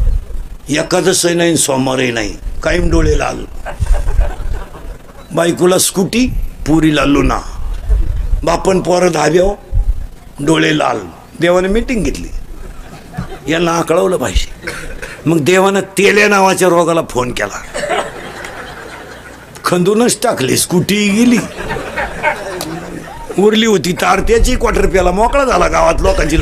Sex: male